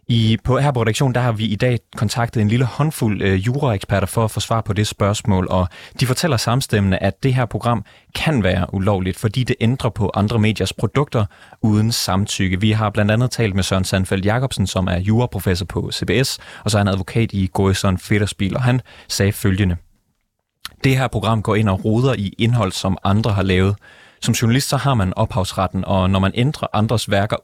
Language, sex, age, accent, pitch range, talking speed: Danish, male, 30-49, native, 95-115 Hz, 205 wpm